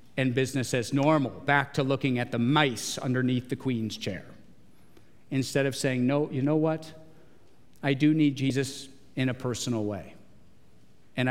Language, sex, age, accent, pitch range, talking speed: English, male, 50-69, American, 135-165 Hz, 160 wpm